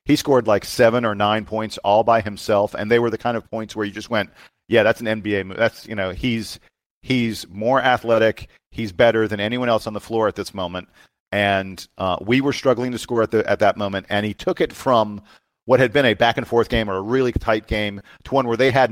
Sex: male